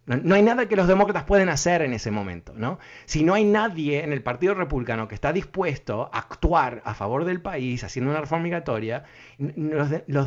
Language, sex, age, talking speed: Spanish, male, 30-49, 210 wpm